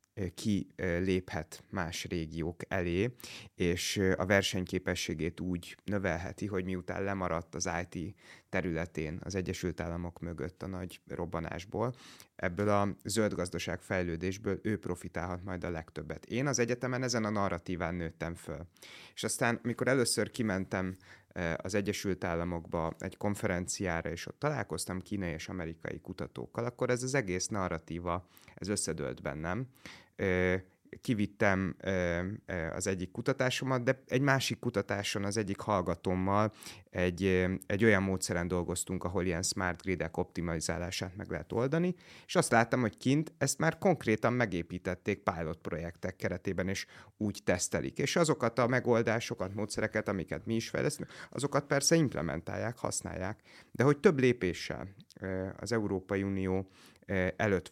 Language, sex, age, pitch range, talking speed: Hungarian, male, 30-49, 90-110 Hz, 130 wpm